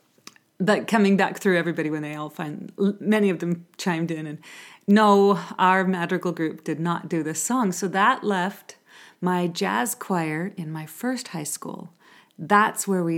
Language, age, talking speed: English, 40-59, 175 wpm